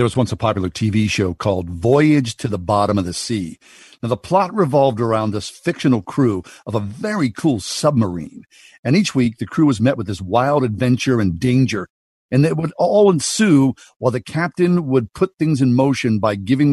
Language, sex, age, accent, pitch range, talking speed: English, male, 50-69, American, 105-140 Hz, 200 wpm